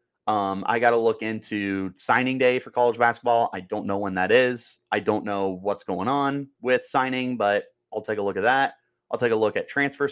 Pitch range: 110-135 Hz